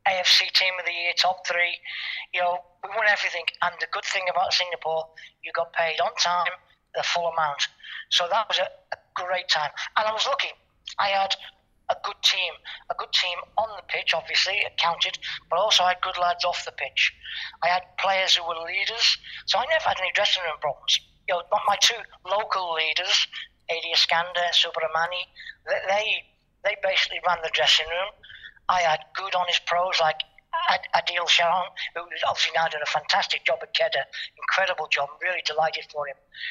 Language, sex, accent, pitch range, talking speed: English, male, British, 165-190 Hz, 190 wpm